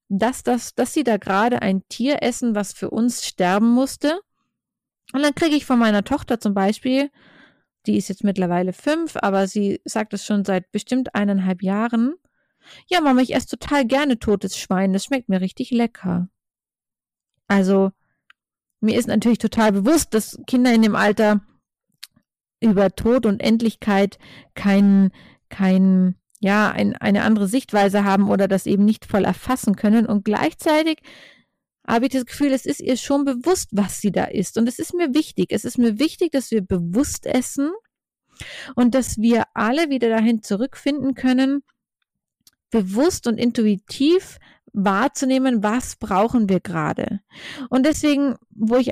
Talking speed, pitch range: 155 wpm, 205-265 Hz